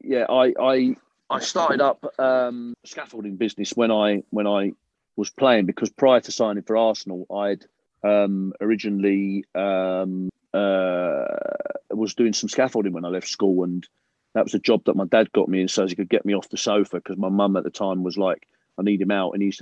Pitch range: 95-110 Hz